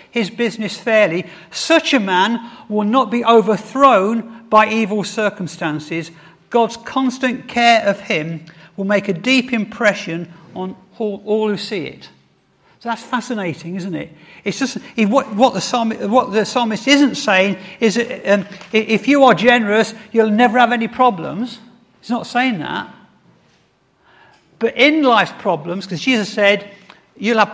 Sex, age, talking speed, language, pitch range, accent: male, 50-69, 150 wpm, English, 190-240 Hz, British